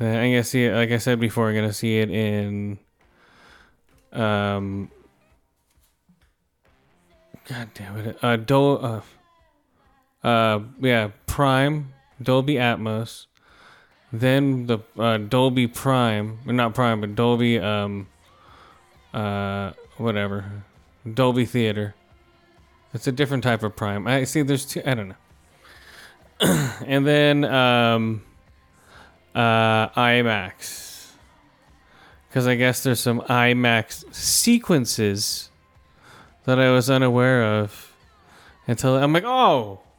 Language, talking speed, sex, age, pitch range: English, 110 wpm, male, 20-39, 100-125 Hz